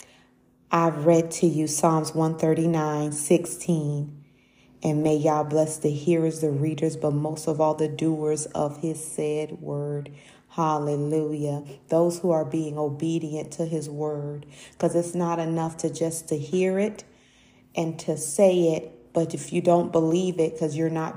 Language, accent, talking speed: English, American, 160 wpm